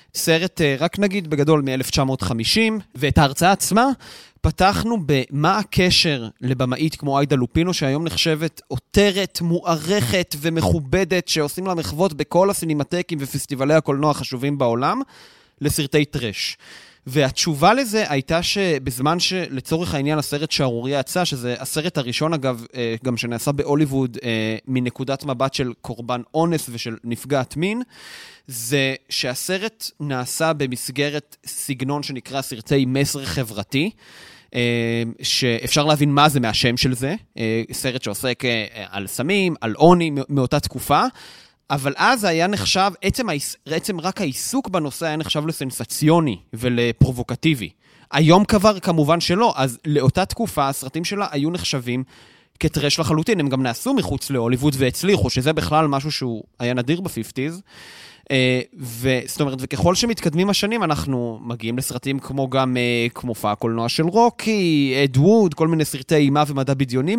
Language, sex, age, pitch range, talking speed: Hebrew, male, 30-49, 130-165 Hz, 125 wpm